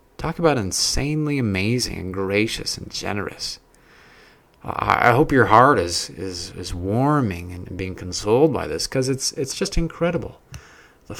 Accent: American